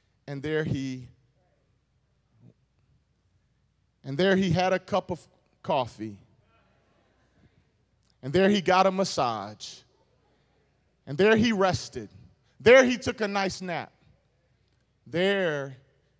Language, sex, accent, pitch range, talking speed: English, male, American, 115-155 Hz, 105 wpm